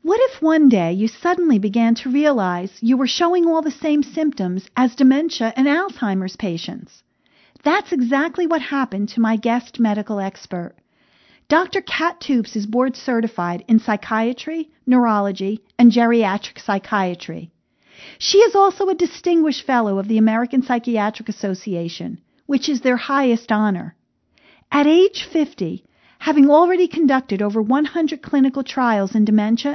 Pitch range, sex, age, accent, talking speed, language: 215-300 Hz, female, 50-69, American, 140 wpm, English